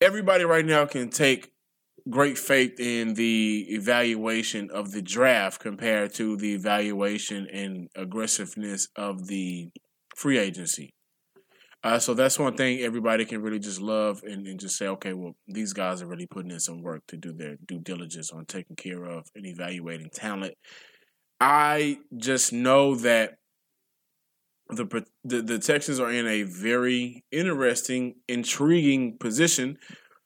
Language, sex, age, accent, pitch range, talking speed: English, male, 20-39, American, 105-145 Hz, 145 wpm